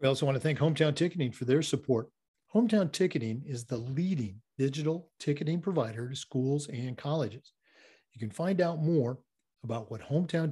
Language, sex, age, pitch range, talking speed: English, male, 40-59, 120-160 Hz, 165 wpm